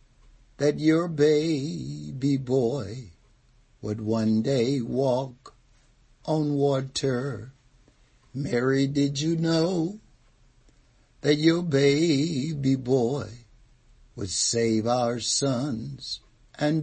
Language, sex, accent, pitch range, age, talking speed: English, male, American, 125-165 Hz, 60-79, 80 wpm